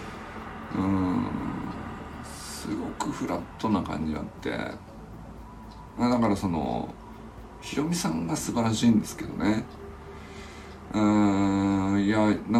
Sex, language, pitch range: male, Japanese, 100-120 Hz